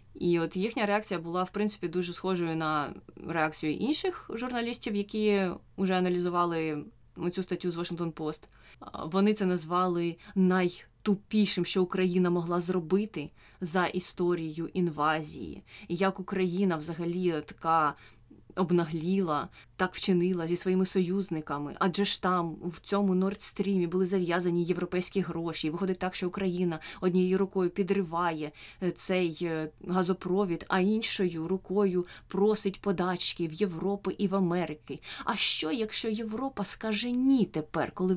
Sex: female